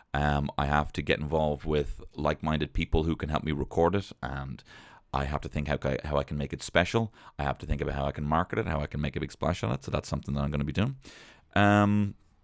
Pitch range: 75-115 Hz